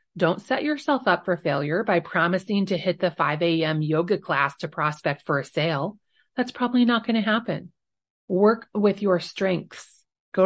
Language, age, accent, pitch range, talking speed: English, 30-49, American, 155-215 Hz, 180 wpm